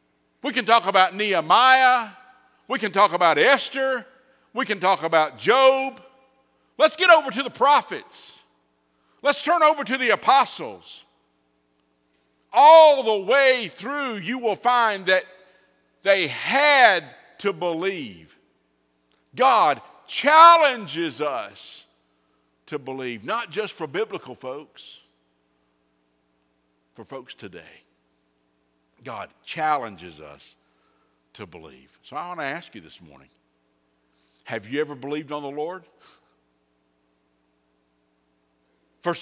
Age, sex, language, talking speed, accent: 50-69, male, English, 110 wpm, American